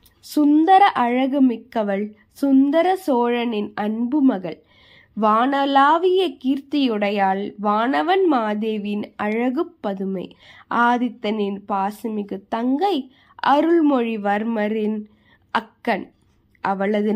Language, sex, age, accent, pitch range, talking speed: Tamil, female, 20-39, native, 220-285 Hz, 65 wpm